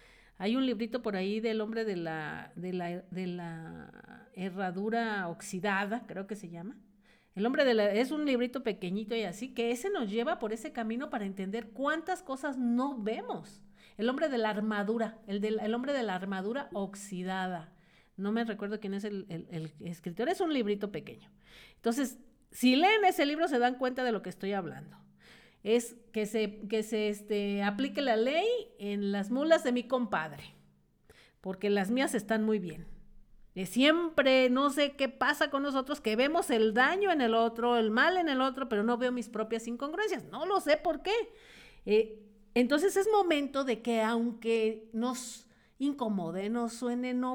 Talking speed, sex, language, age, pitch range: 185 wpm, female, Spanish, 50-69, 200-255 Hz